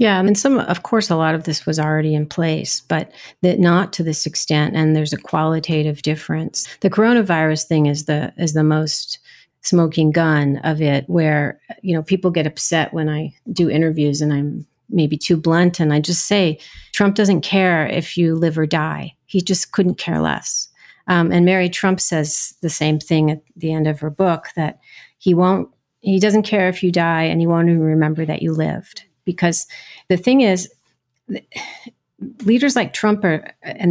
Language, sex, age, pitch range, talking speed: English, female, 40-59, 155-190 Hz, 195 wpm